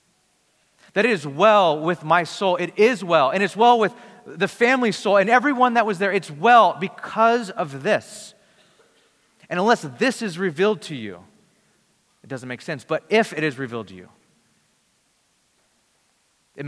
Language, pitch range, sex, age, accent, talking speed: English, 150-215 Hz, male, 30-49, American, 165 wpm